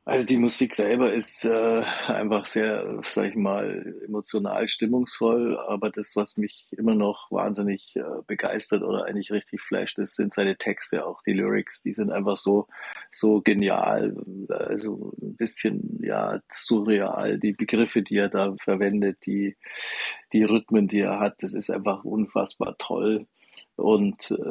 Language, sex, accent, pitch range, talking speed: German, male, German, 100-115 Hz, 150 wpm